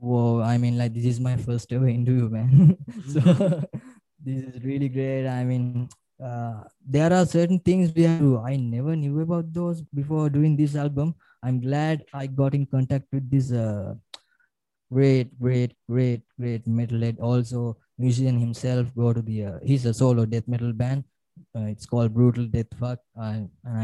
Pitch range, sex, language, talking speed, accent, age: 115-140 Hz, male, English, 175 wpm, Indian, 20-39